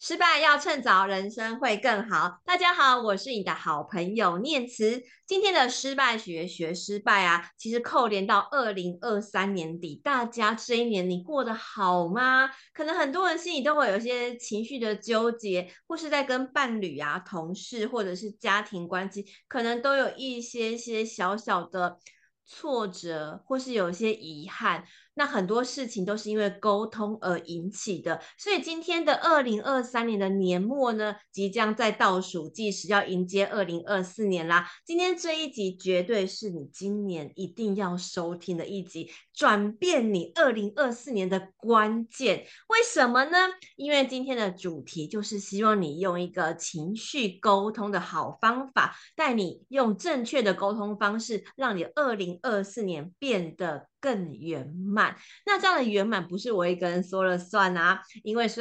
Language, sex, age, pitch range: Chinese, female, 30-49, 185-245 Hz